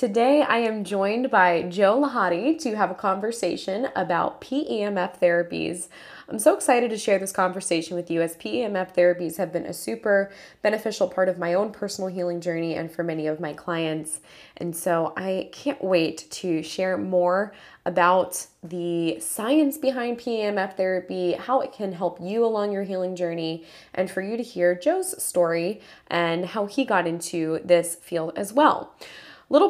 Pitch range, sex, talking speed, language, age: 175-225 Hz, female, 170 wpm, English, 20-39